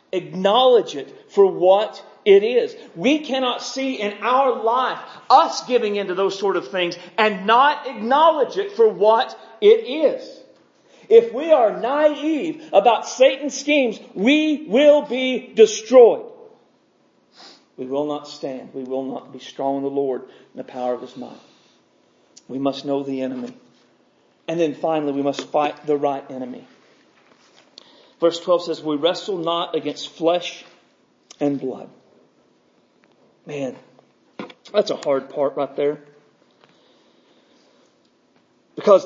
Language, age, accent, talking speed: English, 40-59, American, 135 wpm